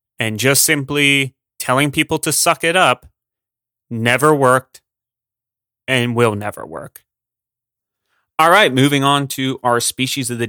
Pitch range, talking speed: 120-145 Hz, 135 wpm